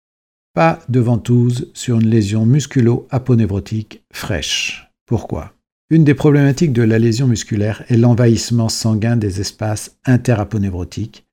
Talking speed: 115 wpm